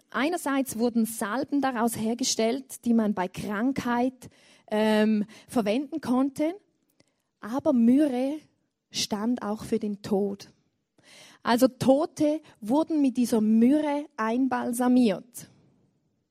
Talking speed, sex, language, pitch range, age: 95 wpm, female, German, 235-290 Hz, 20-39